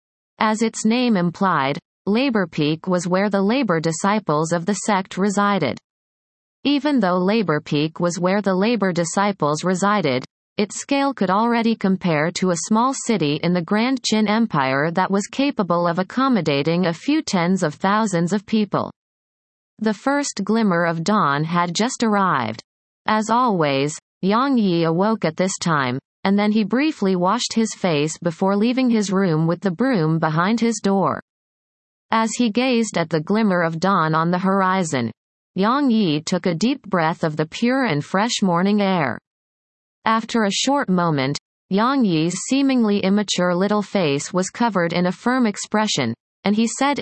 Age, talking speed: 30-49, 160 wpm